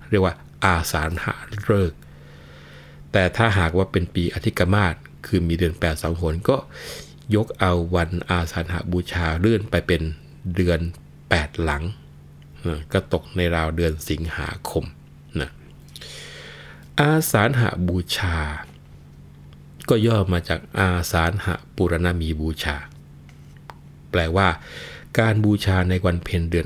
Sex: male